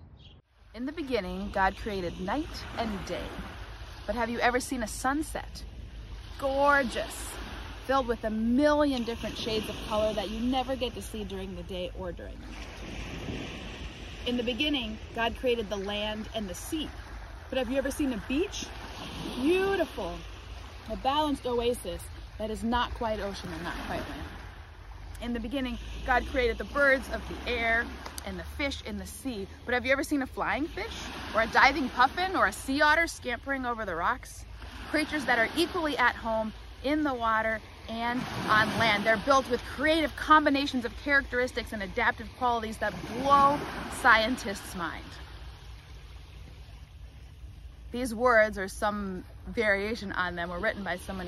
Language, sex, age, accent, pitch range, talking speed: English, female, 30-49, American, 195-270 Hz, 165 wpm